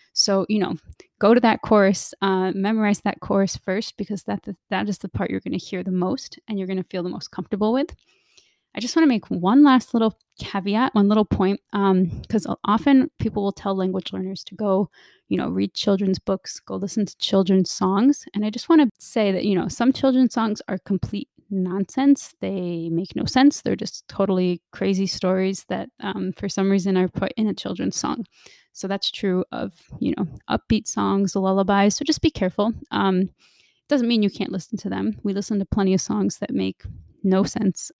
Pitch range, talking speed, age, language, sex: 190-225 Hz, 210 wpm, 20-39, English, female